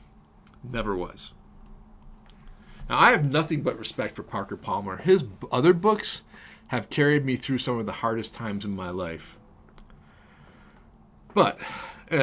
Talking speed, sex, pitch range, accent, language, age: 135 wpm, male, 100-140 Hz, American, English, 40-59